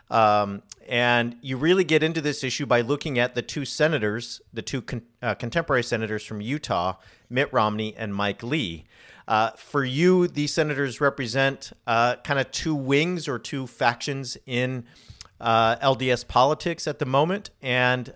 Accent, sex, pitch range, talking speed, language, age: American, male, 115-150 Hz, 155 wpm, English, 50-69